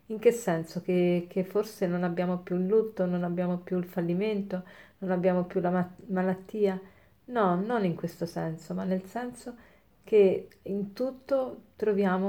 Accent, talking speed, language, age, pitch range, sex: native, 160 wpm, Italian, 40-59, 180-210 Hz, female